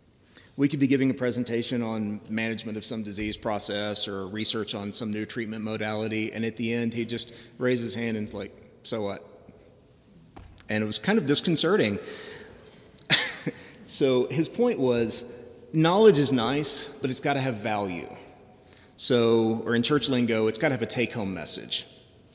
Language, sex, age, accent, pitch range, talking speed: English, male, 30-49, American, 110-130 Hz, 170 wpm